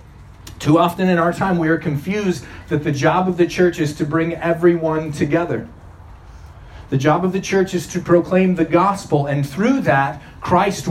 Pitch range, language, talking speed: 140-180 Hz, English, 180 wpm